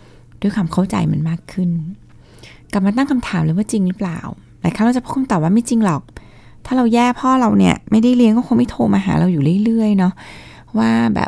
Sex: female